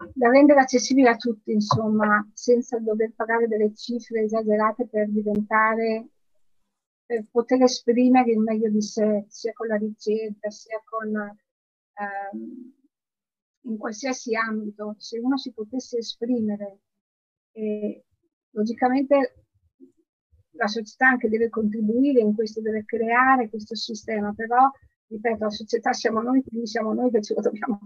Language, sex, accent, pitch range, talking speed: Italian, female, native, 215-245 Hz, 135 wpm